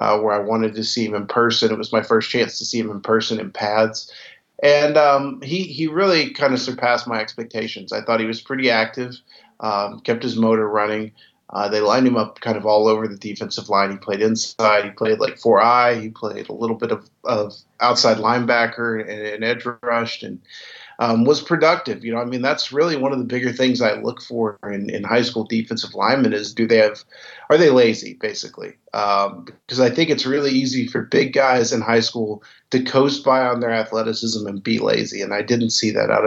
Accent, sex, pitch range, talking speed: American, male, 110-130 Hz, 220 wpm